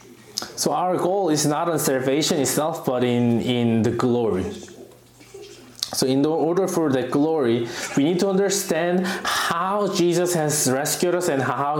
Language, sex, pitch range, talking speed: English, male, 130-195 Hz, 155 wpm